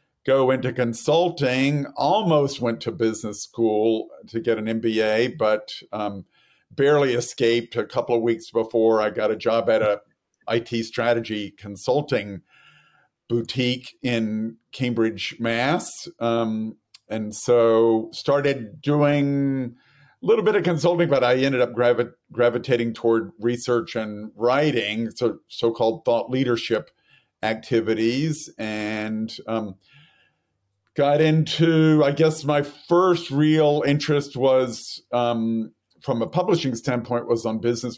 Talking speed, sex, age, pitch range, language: 125 wpm, male, 50-69, 110-140 Hz, English